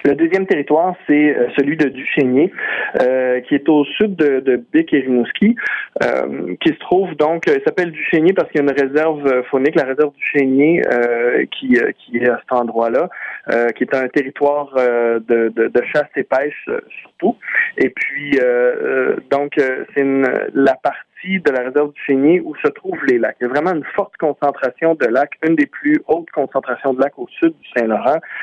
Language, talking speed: French, 190 wpm